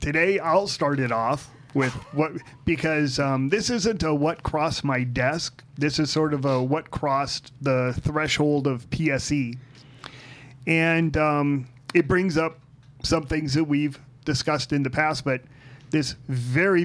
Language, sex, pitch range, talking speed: English, male, 130-155 Hz, 155 wpm